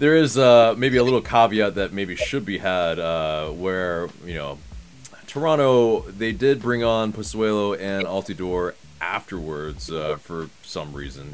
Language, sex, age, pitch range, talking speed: English, male, 30-49, 80-105 Hz, 155 wpm